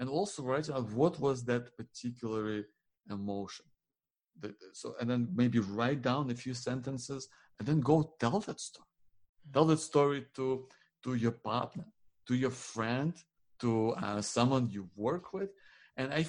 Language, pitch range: English, 115-145 Hz